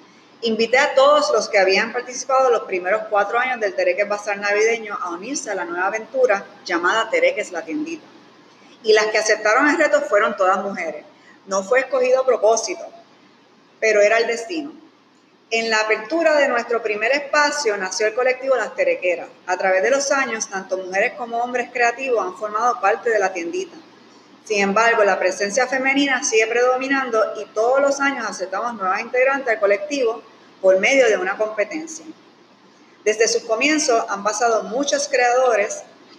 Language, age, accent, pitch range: Spanish, 20-39, American, 205-275 Hz